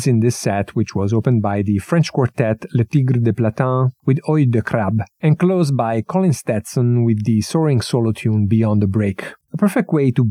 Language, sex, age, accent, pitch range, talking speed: English, male, 50-69, Italian, 110-135 Hz, 205 wpm